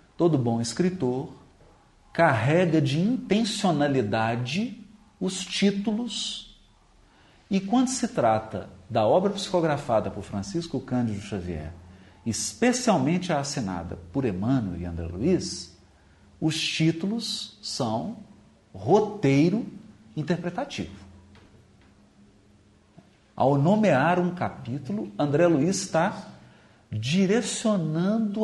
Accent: Brazilian